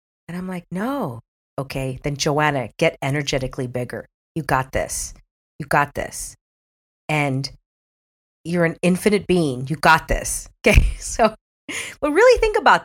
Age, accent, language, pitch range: 40-59, American, English, 140-190 Hz